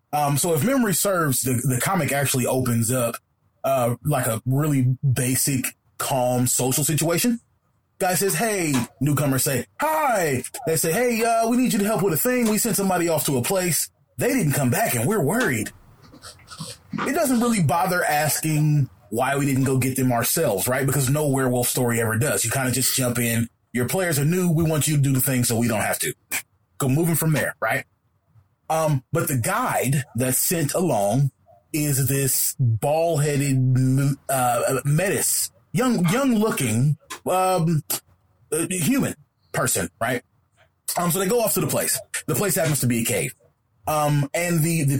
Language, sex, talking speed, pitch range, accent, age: English, male, 180 wpm, 125-170 Hz, American, 20-39